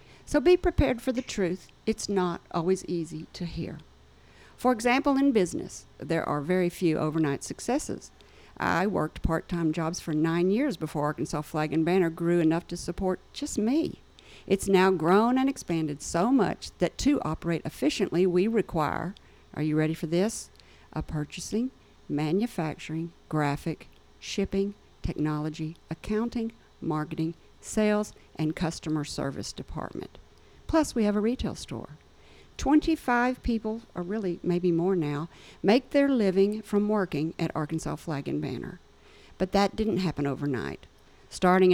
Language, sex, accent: English, female, American